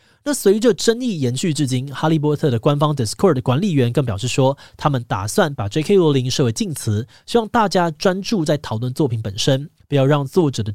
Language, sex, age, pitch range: Chinese, male, 20-39, 120-165 Hz